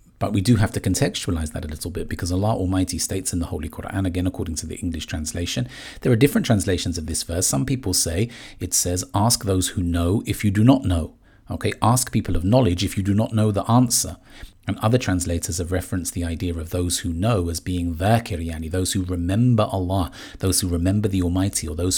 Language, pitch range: English, 90-110 Hz